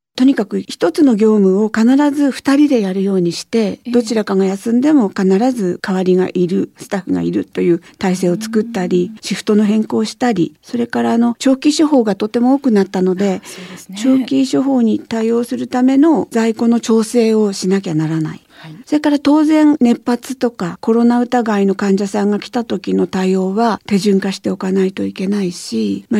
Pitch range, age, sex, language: 180-240 Hz, 50-69, female, Japanese